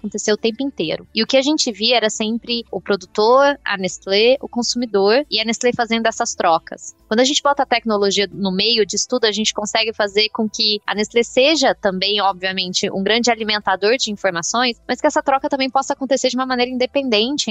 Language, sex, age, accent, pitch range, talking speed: Portuguese, female, 20-39, Brazilian, 200-245 Hz, 210 wpm